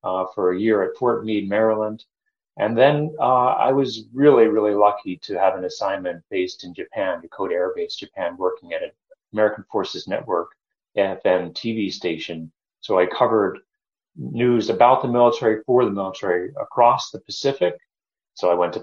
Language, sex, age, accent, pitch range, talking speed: English, male, 30-49, American, 100-130 Hz, 170 wpm